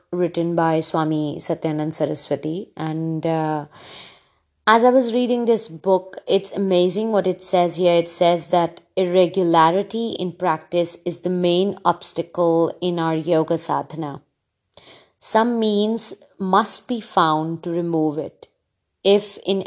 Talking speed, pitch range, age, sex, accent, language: 130 wpm, 165-195 Hz, 30-49, female, Indian, English